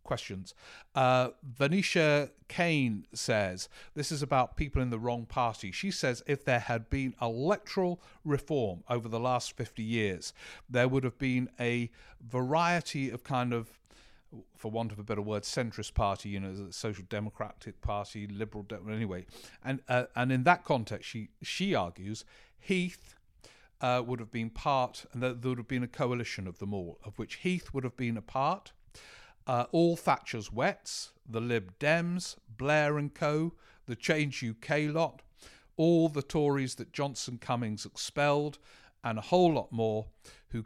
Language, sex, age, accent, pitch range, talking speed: English, male, 50-69, British, 110-140 Hz, 165 wpm